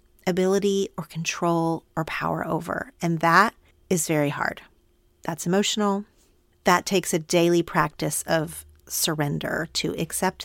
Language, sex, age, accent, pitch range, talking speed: English, female, 40-59, American, 165-205 Hz, 125 wpm